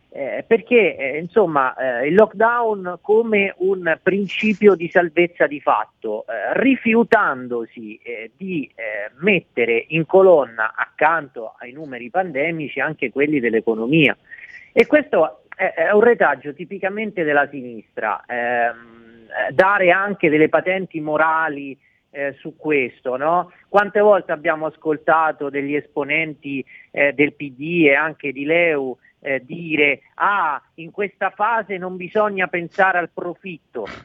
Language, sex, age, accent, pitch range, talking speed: Italian, male, 40-59, native, 145-195 Hz, 125 wpm